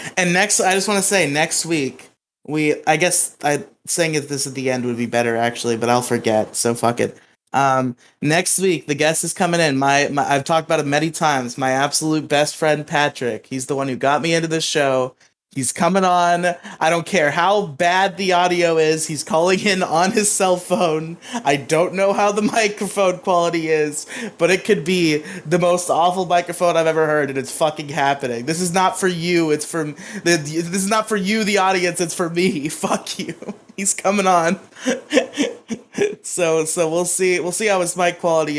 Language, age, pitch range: English, 20-39, 135-180 Hz